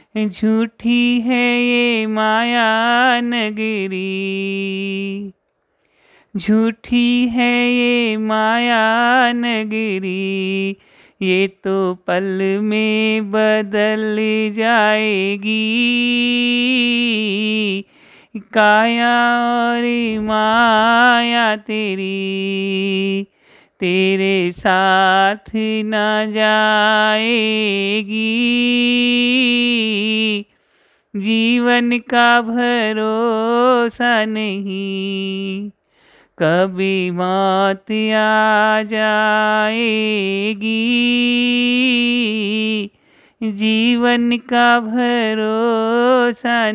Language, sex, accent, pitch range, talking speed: Hindi, male, native, 200-240 Hz, 45 wpm